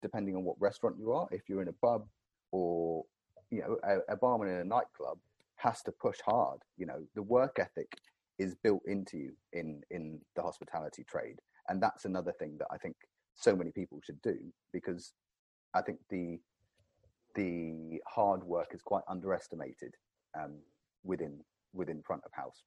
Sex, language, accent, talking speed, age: male, English, British, 175 wpm, 30-49